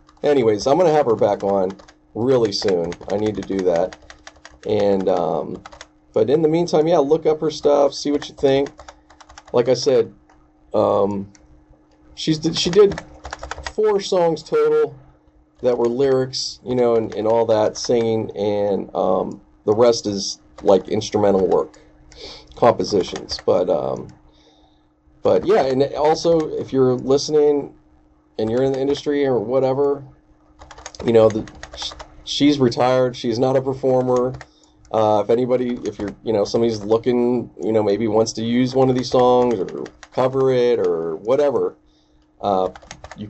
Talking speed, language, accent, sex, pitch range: 150 wpm, English, American, male, 110-145 Hz